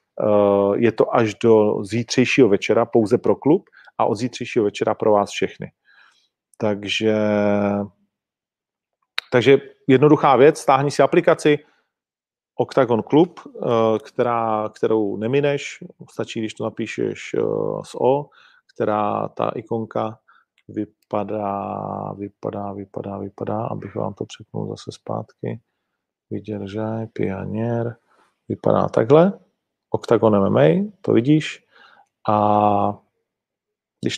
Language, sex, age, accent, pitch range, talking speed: Czech, male, 40-59, native, 105-140 Hz, 100 wpm